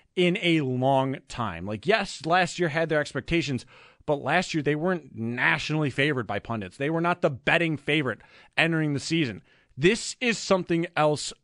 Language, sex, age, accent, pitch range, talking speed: English, male, 30-49, American, 125-175 Hz, 175 wpm